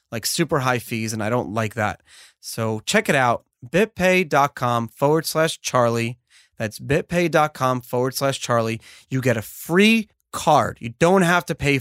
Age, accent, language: 30-49, American, English